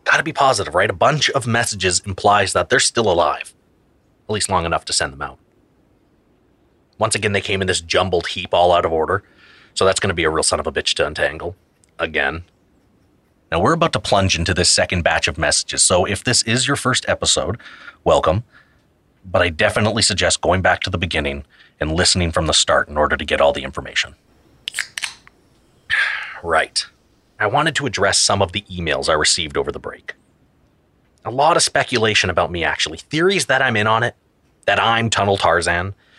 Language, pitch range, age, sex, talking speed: English, 90-115 Hz, 30-49, male, 195 wpm